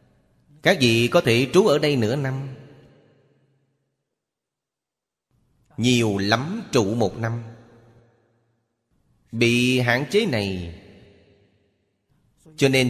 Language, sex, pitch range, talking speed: Vietnamese, male, 100-130 Hz, 95 wpm